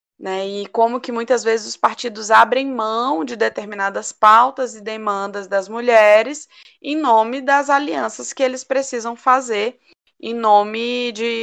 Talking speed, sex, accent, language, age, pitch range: 145 wpm, female, Brazilian, Portuguese, 20-39, 210-260 Hz